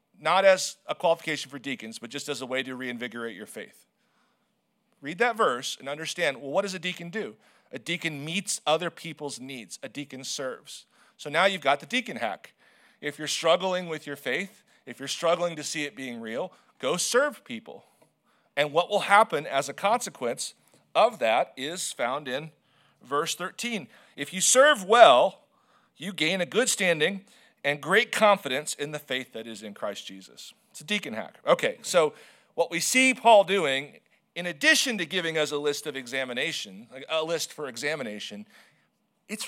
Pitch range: 145-230 Hz